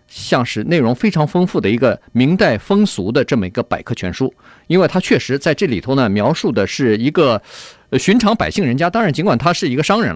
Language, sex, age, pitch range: Chinese, male, 50-69, 125-185 Hz